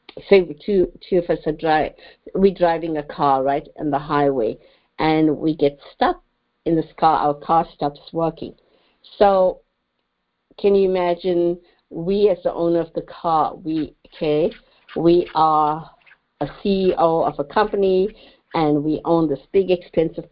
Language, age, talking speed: English, 50-69, 155 wpm